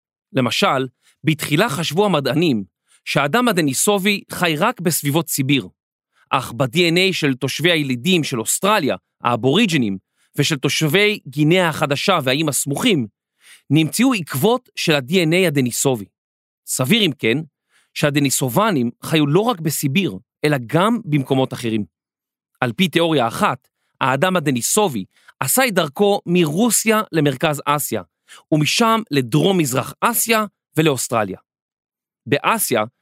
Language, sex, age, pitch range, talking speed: Hebrew, male, 40-59, 140-195 Hz, 105 wpm